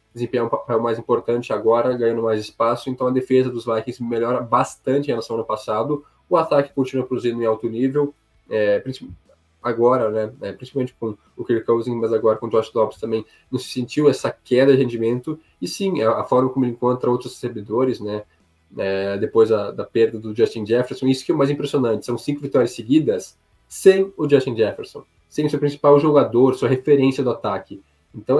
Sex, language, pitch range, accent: male, Portuguese, 110-135 Hz, Brazilian